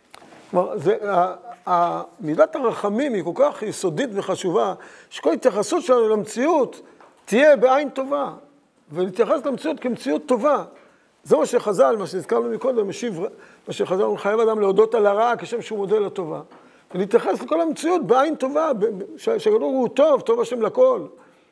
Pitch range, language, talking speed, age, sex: 195-275 Hz, Hebrew, 135 wpm, 50-69, male